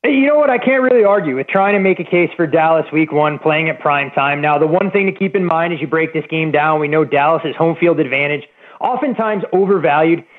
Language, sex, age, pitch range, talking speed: English, male, 30-49, 150-185 Hz, 250 wpm